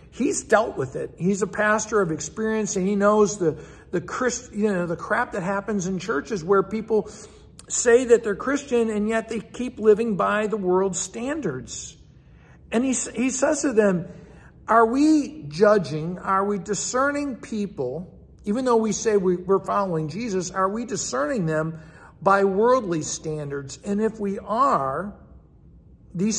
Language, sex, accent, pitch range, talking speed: English, male, American, 175-225 Hz, 160 wpm